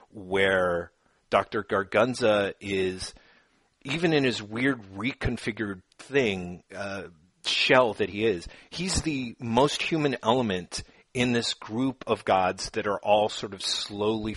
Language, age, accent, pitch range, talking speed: English, 30-49, American, 100-120 Hz, 130 wpm